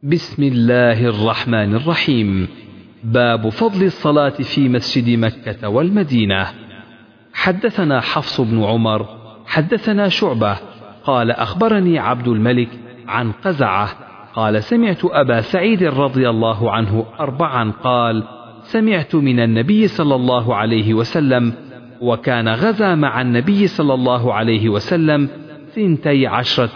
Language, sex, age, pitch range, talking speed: Arabic, male, 40-59, 110-155 Hz, 110 wpm